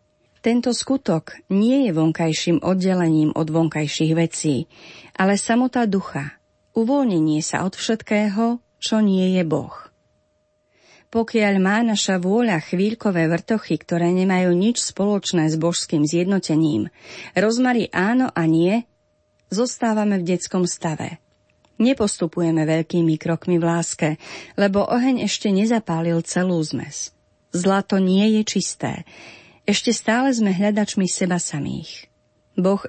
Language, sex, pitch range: Slovak, female, 160-210 Hz